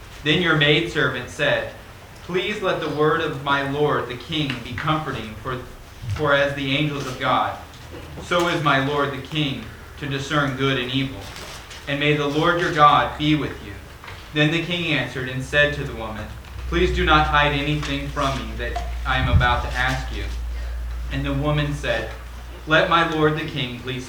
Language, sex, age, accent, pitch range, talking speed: English, male, 30-49, American, 115-150 Hz, 185 wpm